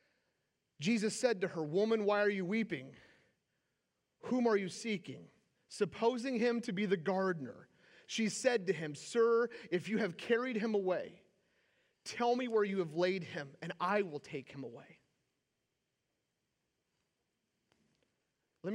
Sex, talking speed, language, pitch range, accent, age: male, 140 wpm, English, 175-230 Hz, American, 30-49